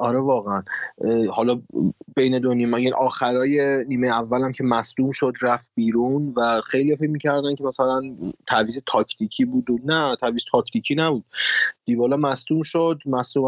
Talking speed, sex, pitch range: 145 wpm, male, 115-145 Hz